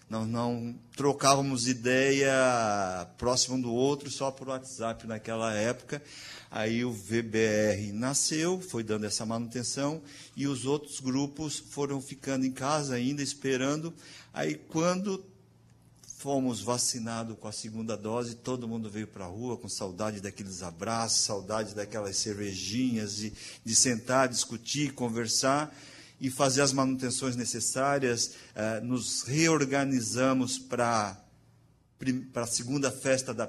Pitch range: 110-140 Hz